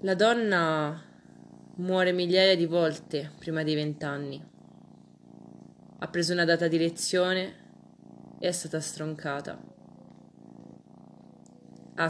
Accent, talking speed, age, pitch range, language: native, 100 wpm, 20-39, 155-190 Hz, Italian